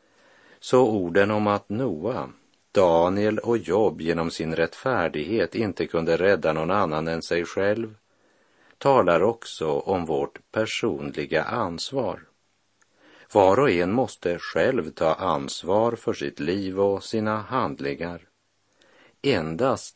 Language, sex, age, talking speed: Swedish, male, 50-69, 115 wpm